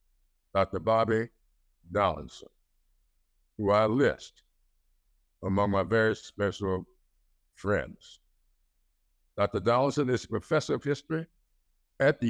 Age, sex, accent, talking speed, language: 60-79, male, American, 100 wpm, English